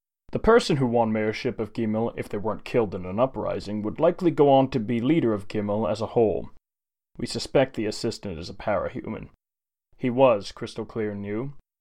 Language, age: English, 30-49